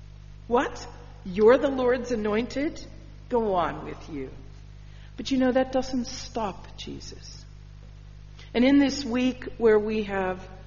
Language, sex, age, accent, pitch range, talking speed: English, female, 50-69, American, 130-215 Hz, 130 wpm